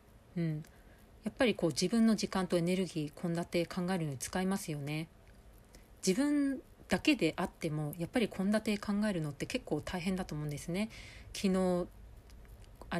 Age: 40-59